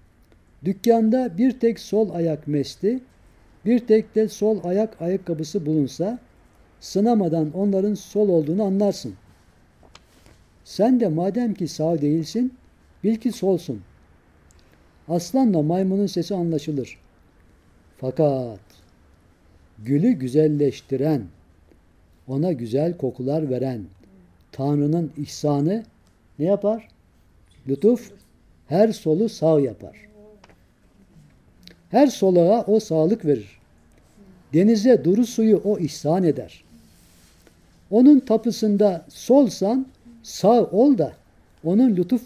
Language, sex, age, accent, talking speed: Turkish, male, 60-79, native, 95 wpm